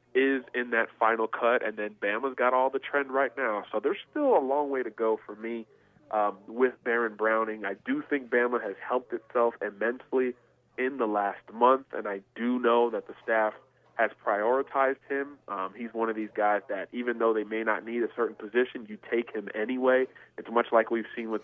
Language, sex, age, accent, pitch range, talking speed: English, male, 30-49, American, 110-130 Hz, 215 wpm